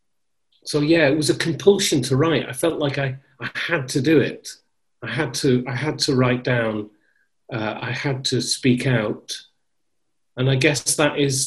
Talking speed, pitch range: 190 wpm, 125-145 Hz